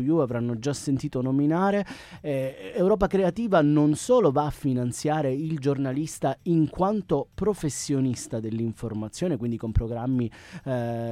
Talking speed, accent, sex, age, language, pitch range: 120 wpm, native, male, 30-49, Italian, 125-165 Hz